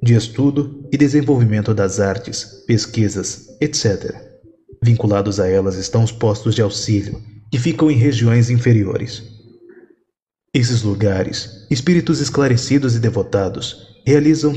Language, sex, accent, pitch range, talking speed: Portuguese, male, Brazilian, 105-130 Hz, 115 wpm